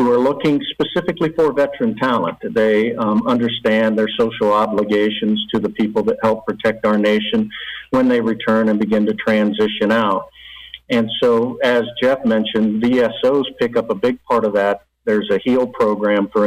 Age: 50-69